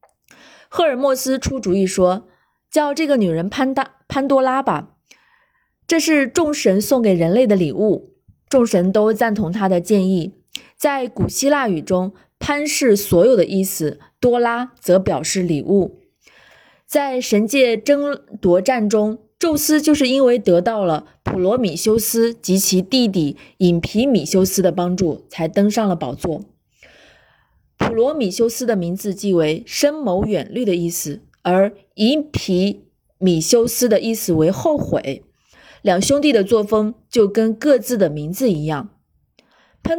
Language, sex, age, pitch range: Chinese, female, 20-39, 185-260 Hz